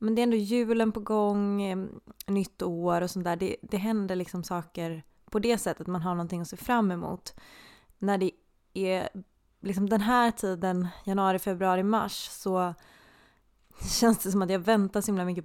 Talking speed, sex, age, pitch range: 185 wpm, female, 20-39, 180-210 Hz